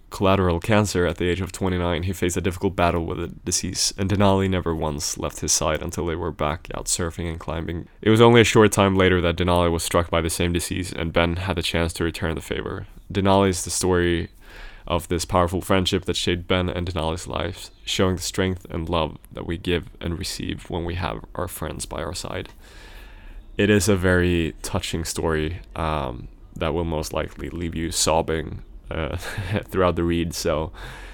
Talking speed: 200 wpm